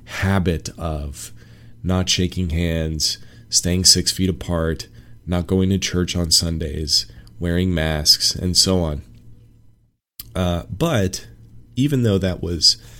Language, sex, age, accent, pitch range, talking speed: English, male, 30-49, American, 85-110 Hz, 120 wpm